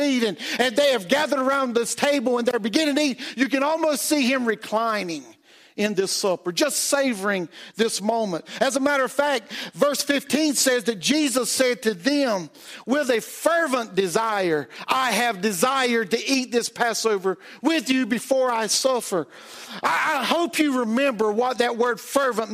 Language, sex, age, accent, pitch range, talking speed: English, male, 50-69, American, 240-295 Hz, 170 wpm